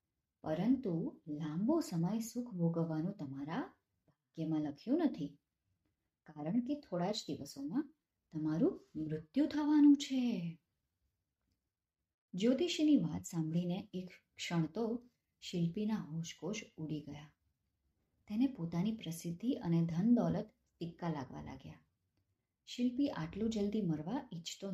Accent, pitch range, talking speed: native, 150-230 Hz, 70 wpm